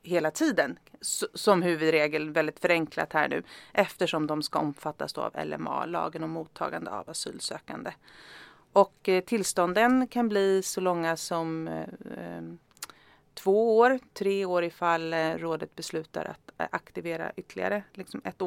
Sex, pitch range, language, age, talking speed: female, 160-195 Hz, Swedish, 30-49, 115 wpm